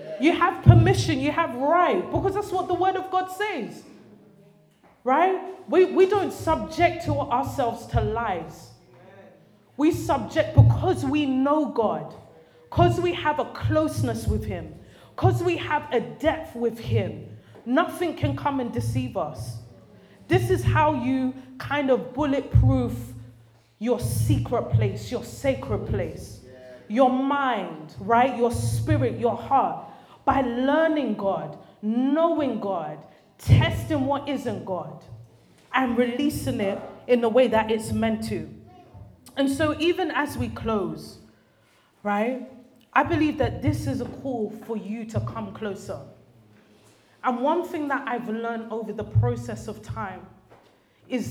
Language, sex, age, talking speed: English, female, 20-39, 140 wpm